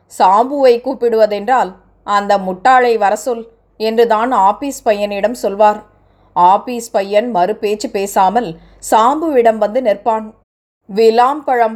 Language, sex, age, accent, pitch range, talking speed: Tamil, female, 20-39, native, 210-255 Hz, 90 wpm